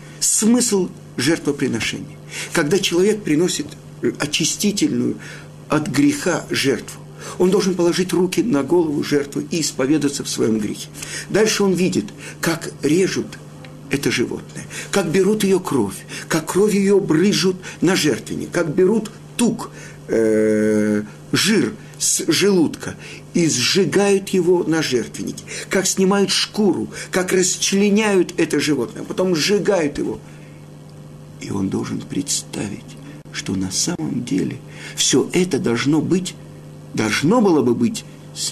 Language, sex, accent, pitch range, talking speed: Russian, male, native, 125-185 Hz, 120 wpm